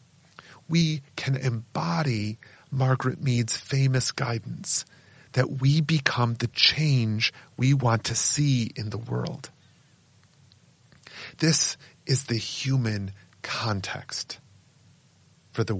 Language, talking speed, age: English, 100 wpm, 40-59